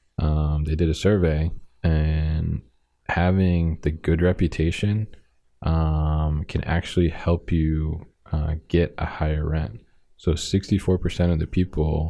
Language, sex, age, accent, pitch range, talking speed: English, male, 20-39, American, 75-85 Hz, 125 wpm